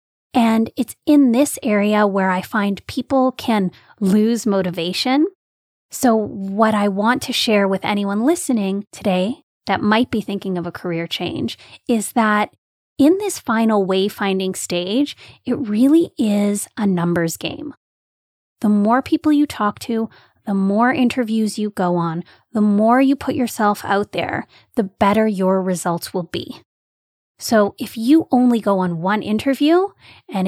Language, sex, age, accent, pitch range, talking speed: English, female, 20-39, American, 190-245 Hz, 150 wpm